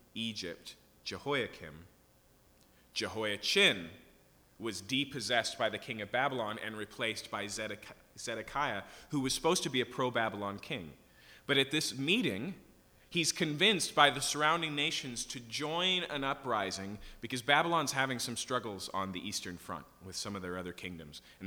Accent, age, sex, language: American, 30-49, male, English